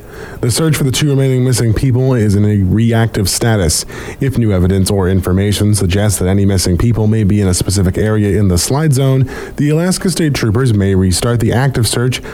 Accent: American